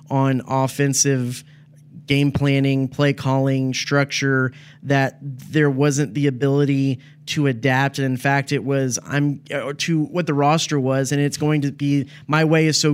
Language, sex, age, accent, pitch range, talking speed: English, male, 30-49, American, 135-150 Hz, 160 wpm